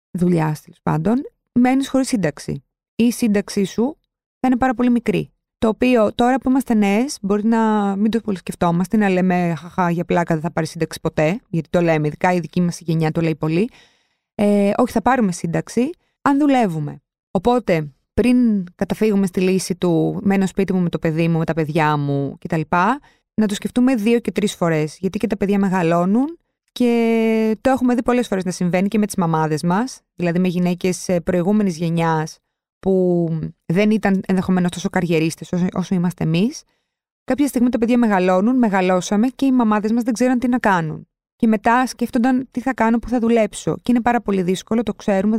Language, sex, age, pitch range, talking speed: Greek, female, 20-39, 180-235 Hz, 190 wpm